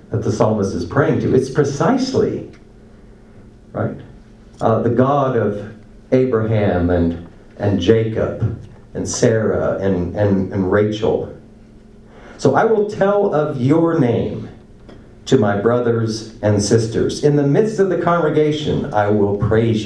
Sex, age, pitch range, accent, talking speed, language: male, 50-69, 105-145 Hz, American, 135 wpm, English